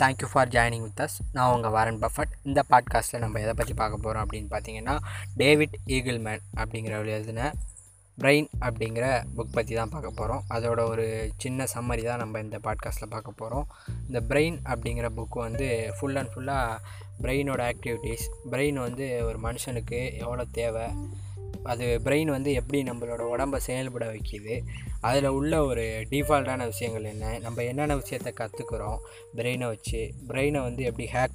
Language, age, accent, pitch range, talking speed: Tamil, 20-39, native, 110-130 Hz, 155 wpm